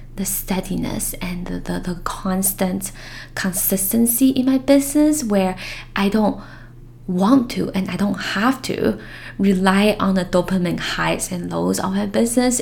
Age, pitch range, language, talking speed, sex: 10-29, 170-205 Hz, English, 145 wpm, female